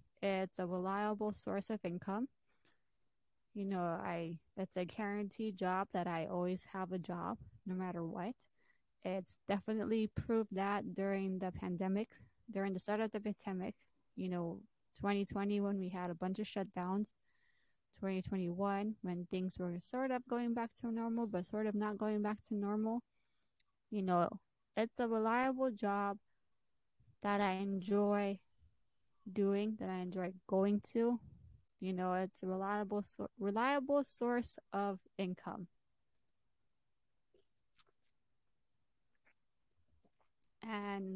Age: 20-39